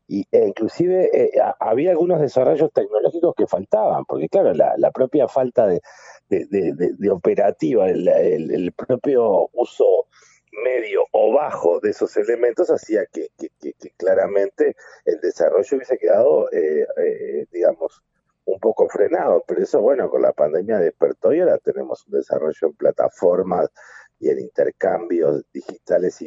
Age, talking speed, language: 50-69, 140 wpm, English